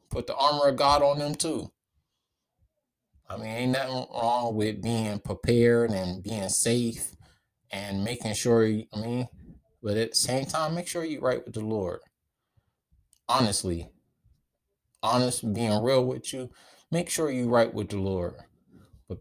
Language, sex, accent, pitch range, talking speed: English, male, American, 95-120 Hz, 155 wpm